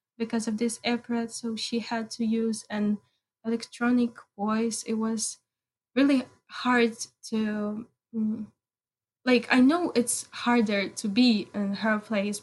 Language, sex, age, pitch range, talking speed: English, female, 10-29, 210-240 Hz, 130 wpm